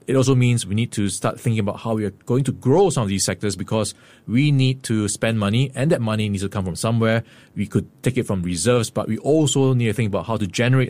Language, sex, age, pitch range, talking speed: English, male, 20-39, 105-130 Hz, 270 wpm